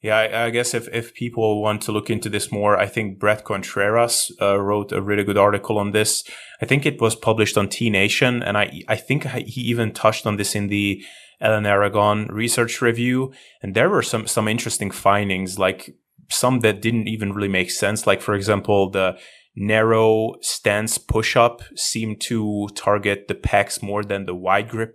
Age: 20-39